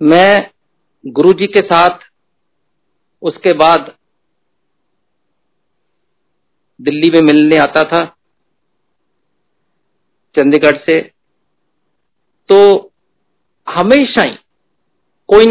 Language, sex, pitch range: Hindi, male, 155-200 Hz